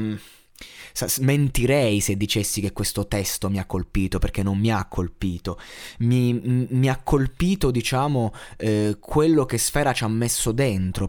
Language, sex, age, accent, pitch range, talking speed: Italian, male, 20-39, native, 105-140 Hz, 145 wpm